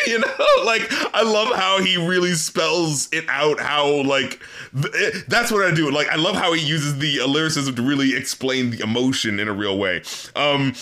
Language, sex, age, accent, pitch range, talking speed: English, male, 30-49, American, 150-200 Hz, 200 wpm